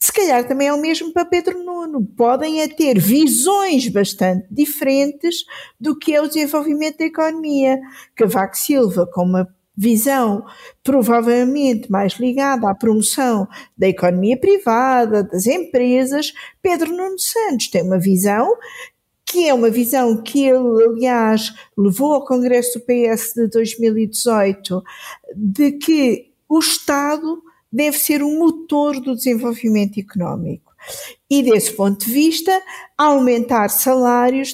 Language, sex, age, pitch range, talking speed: Portuguese, female, 50-69, 225-295 Hz, 130 wpm